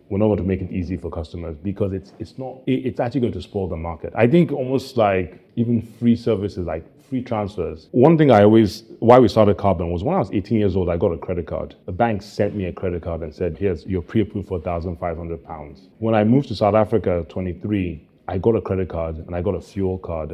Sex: male